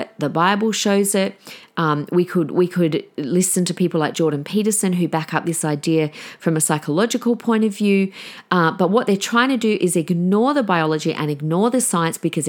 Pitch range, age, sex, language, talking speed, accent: 170-235 Hz, 40-59, female, English, 200 wpm, Australian